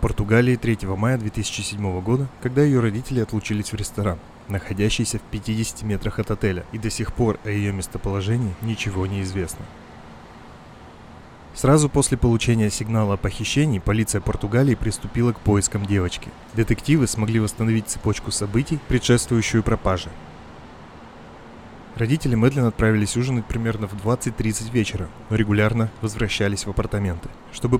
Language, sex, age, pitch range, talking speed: Russian, male, 20-39, 100-120 Hz, 130 wpm